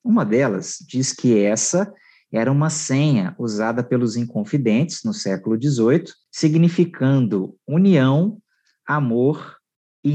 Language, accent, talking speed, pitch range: English, Brazilian, 105 wpm, 110-165 Hz